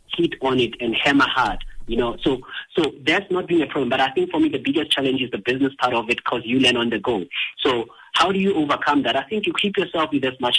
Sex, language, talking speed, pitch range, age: male, English, 280 wpm, 125-195 Hz, 50-69